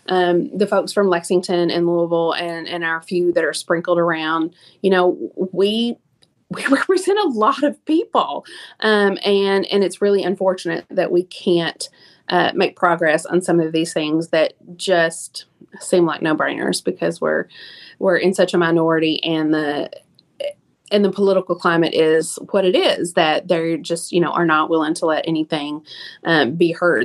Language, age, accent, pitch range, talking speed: English, 30-49, American, 165-205 Hz, 175 wpm